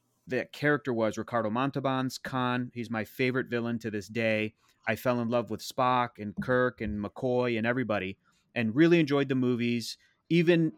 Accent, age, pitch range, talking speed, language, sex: American, 30-49, 115-135 Hz, 175 wpm, English, male